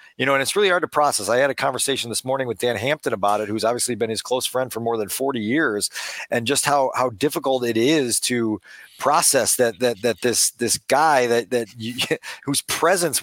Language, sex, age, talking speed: English, male, 40-59, 220 wpm